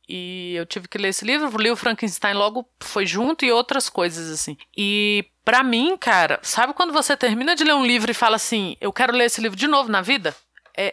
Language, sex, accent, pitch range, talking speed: Portuguese, female, Brazilian, 200-260 Hz, 230 wpm